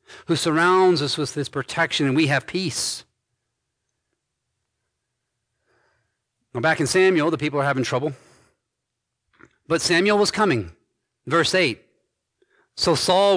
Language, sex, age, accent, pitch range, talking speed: English, male, 40-59, American, 125-185 Hz, 120 wpm